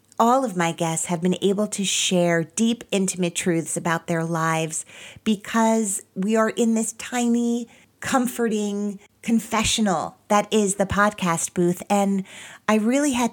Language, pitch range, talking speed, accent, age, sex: English, 170-210 Hz, 145 wpm, American, 40-59, female